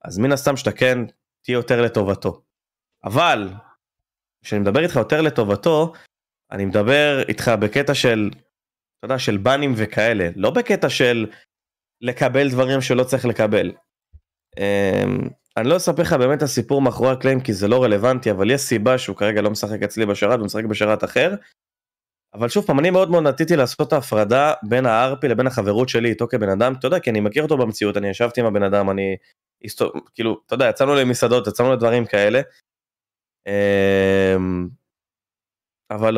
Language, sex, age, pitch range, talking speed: Hebrew, male, 20-39, 105-130 Hz, 165 wpm